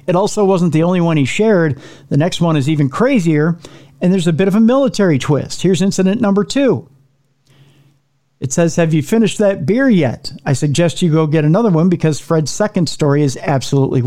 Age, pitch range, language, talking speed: 50-69, 140-175 Hz, English, 200 wpm